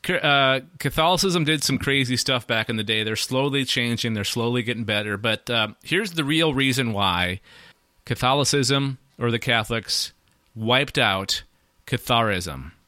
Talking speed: 145 wpm